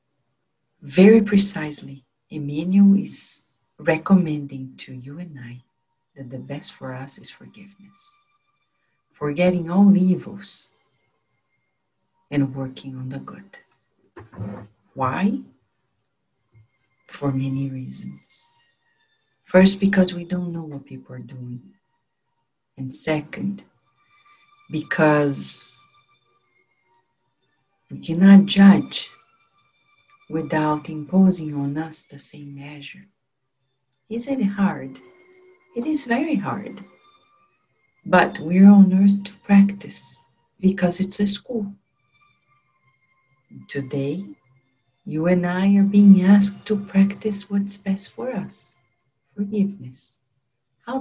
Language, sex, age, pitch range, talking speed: English, female, 50-69, 130-200 Hz, 95 wpm